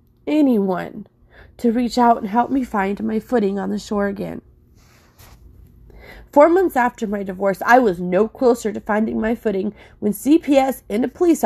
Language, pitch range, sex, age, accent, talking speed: English, 190-245 Hz, female, 30-49, American, 170 wpm